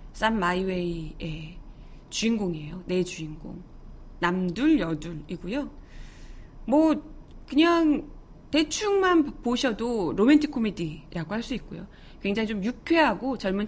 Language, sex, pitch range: Korean, female, 180-295 Hz